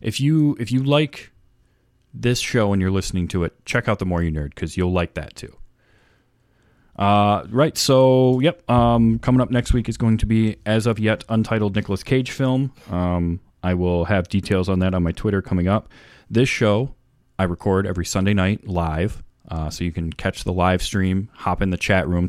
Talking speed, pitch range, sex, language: 205 wpm, 90-110 Hz, male, English